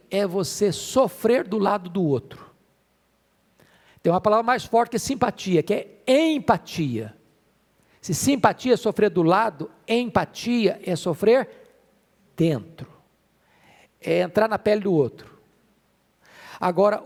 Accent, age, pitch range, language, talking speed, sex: Brazilian, 50-69, 175-225 Hz, Portuguese, 125 wpm, male